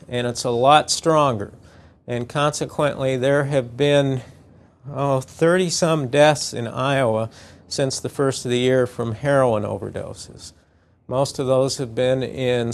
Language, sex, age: English, male, 50-69